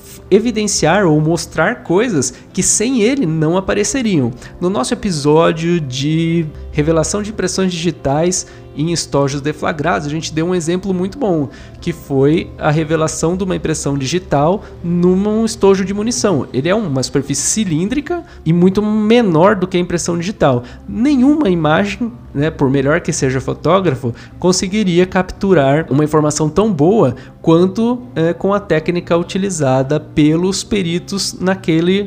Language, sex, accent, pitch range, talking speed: Portuguese, male, Brazilian, 140-185 Hz, 140 wpm